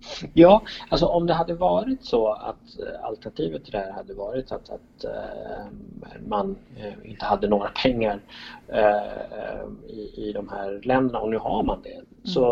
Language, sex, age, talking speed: Swedish, male, 30-49, 155 wpm